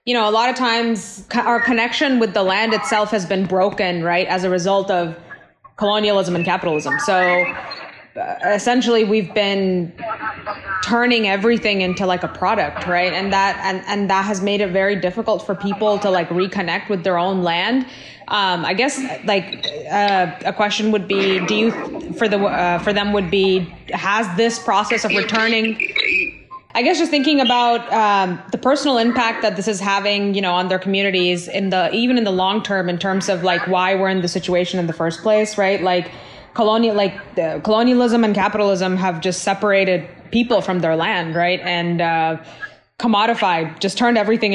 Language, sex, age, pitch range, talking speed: English, female, 20-39, 185-220 Hz, 185 wpm